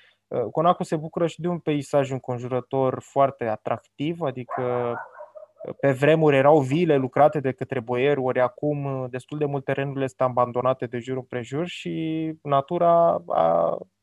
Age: 20-39